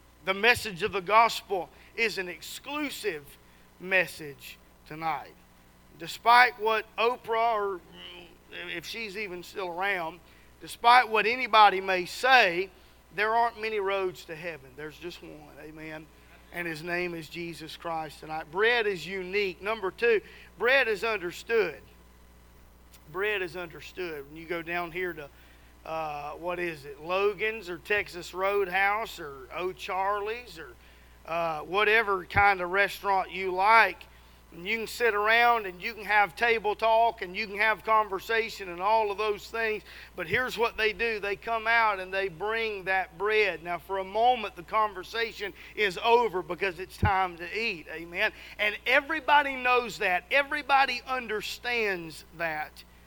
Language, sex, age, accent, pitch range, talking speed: English, male, 40-59, American, 165-220 Hz, 150 wpm